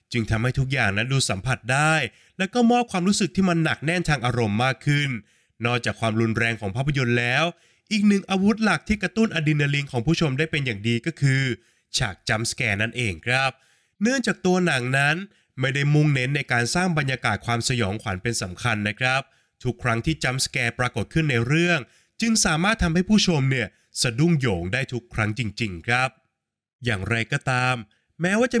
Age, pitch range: 20-39, 115-160 Hz